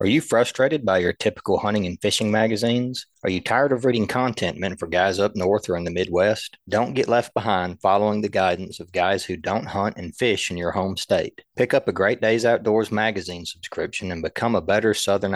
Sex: male